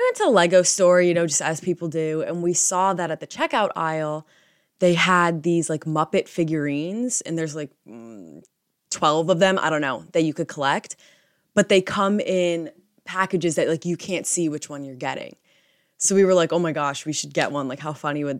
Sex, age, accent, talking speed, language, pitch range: female, 20-39, American, 220 wpm, English, 160-250 Hz